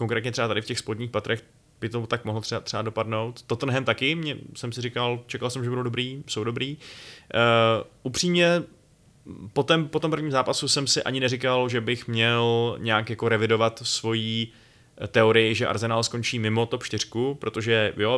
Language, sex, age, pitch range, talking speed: Czech, male, 20-39, 110-125 Hz, 180 wpm